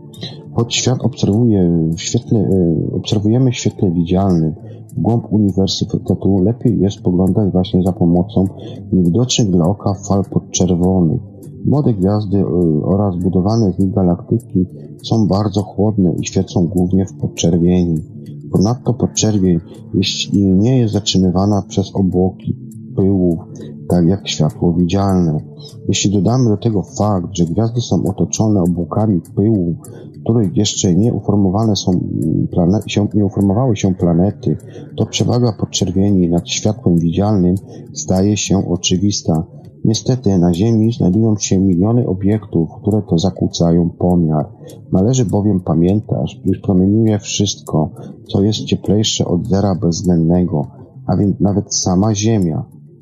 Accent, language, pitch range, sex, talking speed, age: native, Polish, 90-110 Hz, male, 125 wpm, 40-59